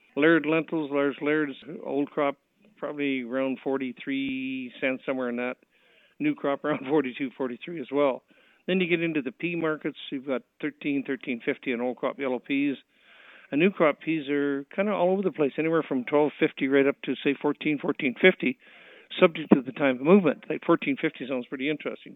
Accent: American